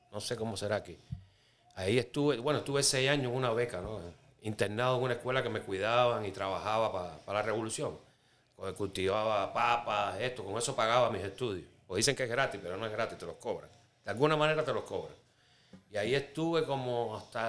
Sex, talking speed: male, 200 wpm